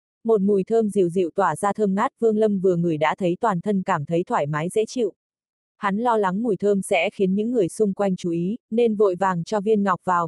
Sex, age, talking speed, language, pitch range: female, 20-39, 250 wpm, Vietnamese, 185-225 Hz